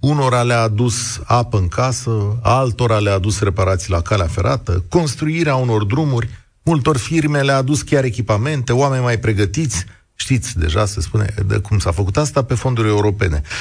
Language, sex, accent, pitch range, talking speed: Romanian, male, native, 95-135 Hz, 165 wpm